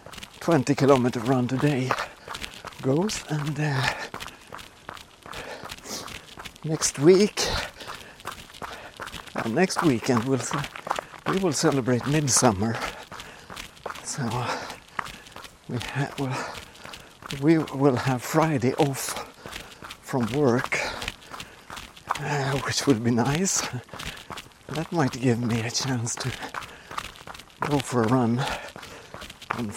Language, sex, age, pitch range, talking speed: English, male, 60-79, 125-150 Hz, 85 wpm